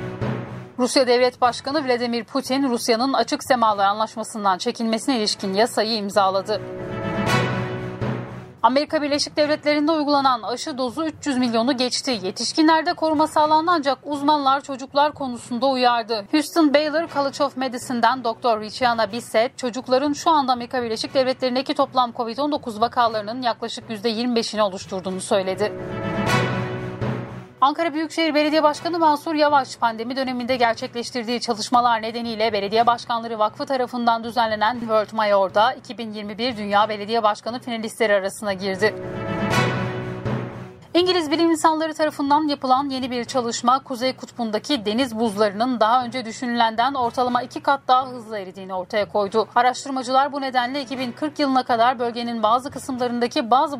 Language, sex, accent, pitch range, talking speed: Turkish, female, native, 215-275 Hz, 120 wpm